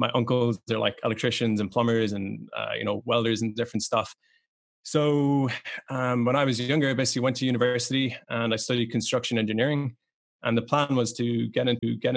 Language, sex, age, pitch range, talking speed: English, male, 20-39, 115-130 Hz, 190 wpm